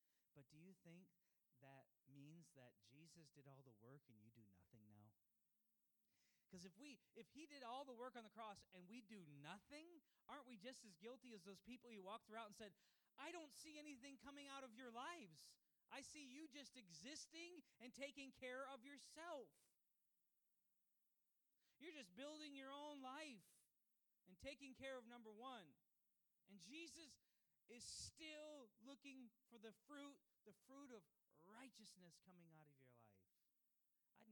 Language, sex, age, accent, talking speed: English, male, 30-49, American, 165 wpm